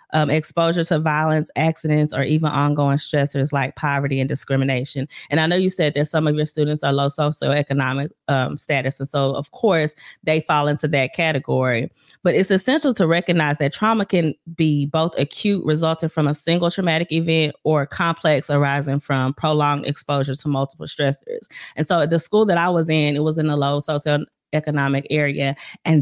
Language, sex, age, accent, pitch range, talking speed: English, female, 30-49, American, 145-165 Hz, 185 wpm